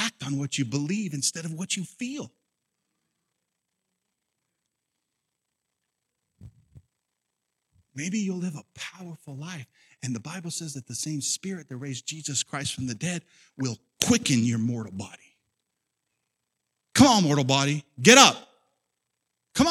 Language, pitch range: English, 120-200 Hz